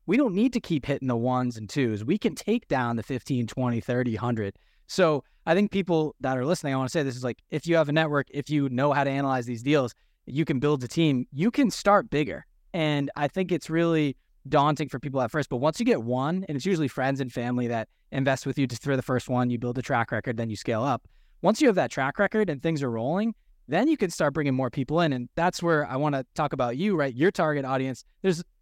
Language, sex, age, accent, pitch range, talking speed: English, male, 20-39, American, 125-160 Hz, 265 wpm